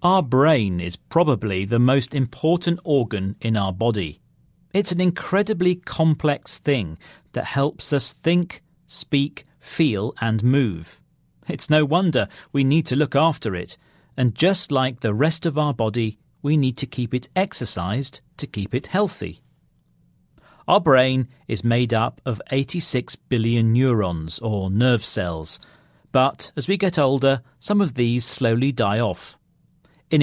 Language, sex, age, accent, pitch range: Chinese, male, 40-59, British, 110-145 Hz